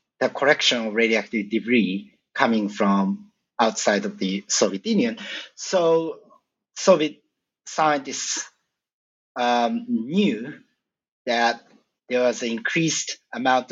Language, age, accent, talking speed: English, 50-69, Japanese, 100 wpm